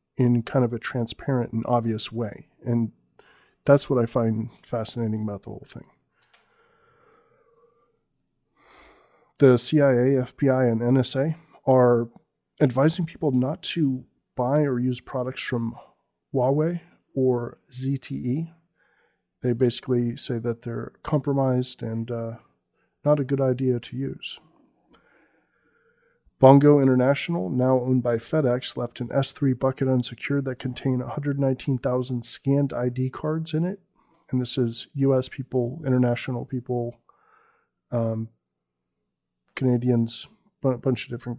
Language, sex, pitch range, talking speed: English, male, 120-140 Hz, 120 wpm